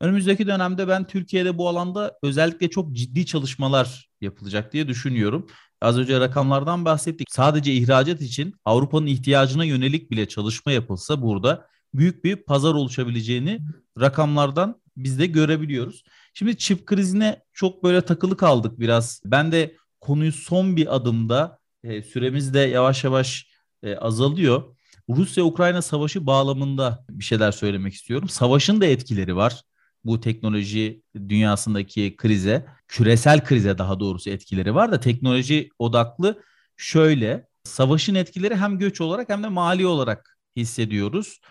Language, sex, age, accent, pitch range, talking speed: Turkish, male, 40-59, native, 115-165 Hz, 130 wpm